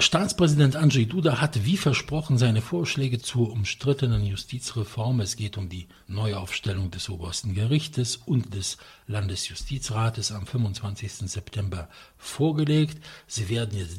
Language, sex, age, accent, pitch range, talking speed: English, male, 60-79, German, 105-130 Hz, 125 wpm